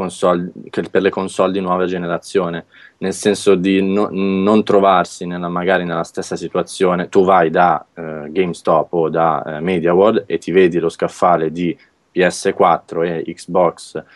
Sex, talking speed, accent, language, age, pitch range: male, 140 wpm, Italian, English, 20-39, 85-95 Hz